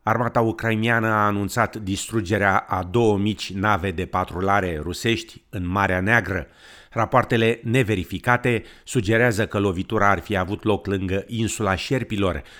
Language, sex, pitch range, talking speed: Romanian, male, 95-115 Hz, 130 wpm